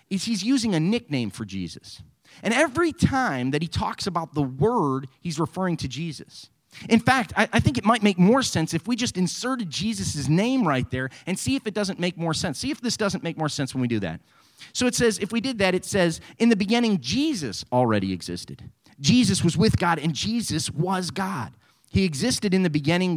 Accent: American